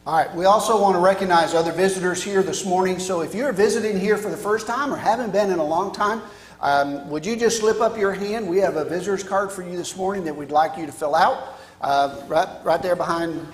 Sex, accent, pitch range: male, American, 150-200 Hz